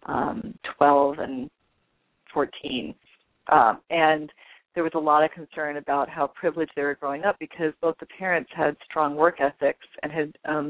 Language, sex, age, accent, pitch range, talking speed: English, female, 40-59, American, 150-175 Hz, 170 wpm